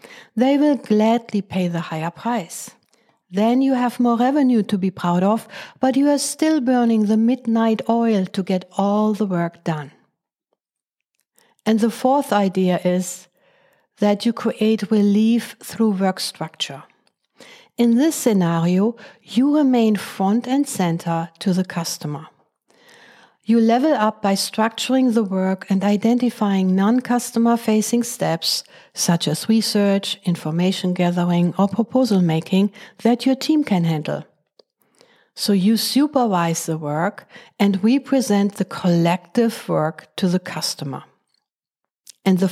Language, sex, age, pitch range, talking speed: English, female, 60-79, 185-235 Hz, 130 wpm